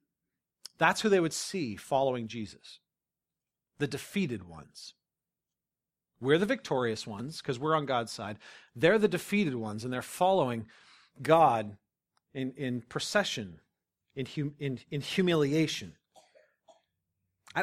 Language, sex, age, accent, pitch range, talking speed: English, male, 40-59, American, 125-180 Hz, 125 wpm